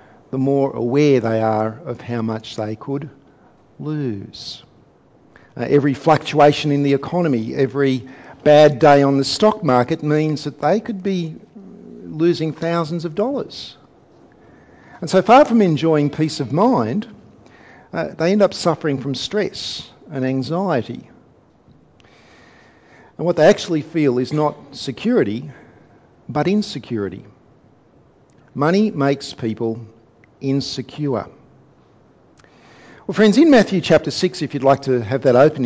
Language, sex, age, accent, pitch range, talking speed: English, male, 50-69, Australian, 130-175 Hz, 130 wpm